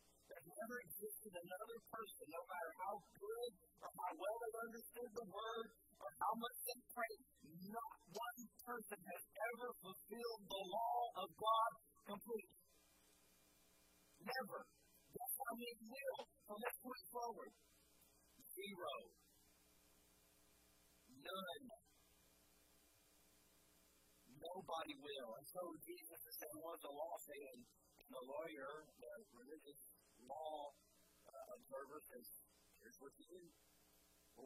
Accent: American